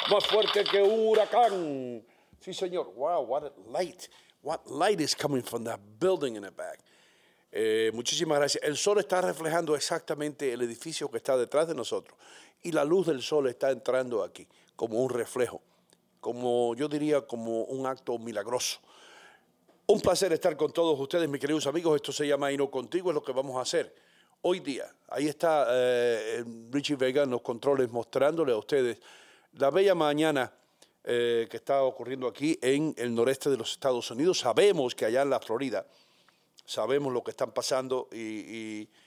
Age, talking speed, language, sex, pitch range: 50-69, 175 wpm, English, male, 125-170 Hz